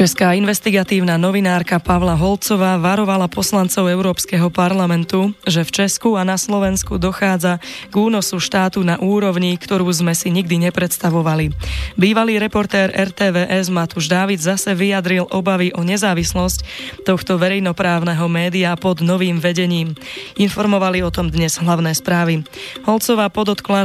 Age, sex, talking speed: 20-39, female, 125 wpm